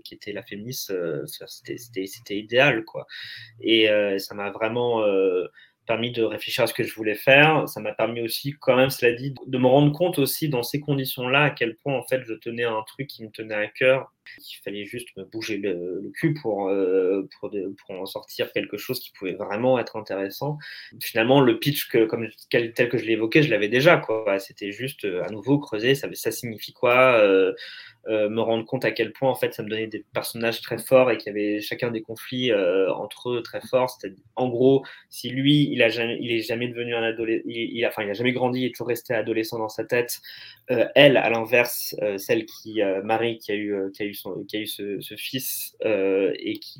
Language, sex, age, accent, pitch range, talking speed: French, male, 20-39, French, 110-140 Hz, 230 wpm